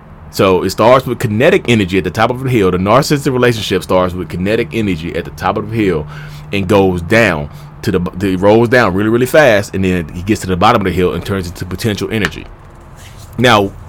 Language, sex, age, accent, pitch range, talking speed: English, male, 30-49, American, 95-125 Hz, 225 wpm